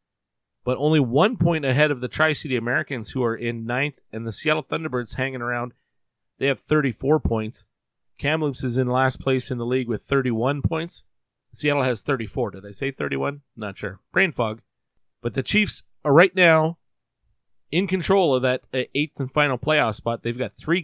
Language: English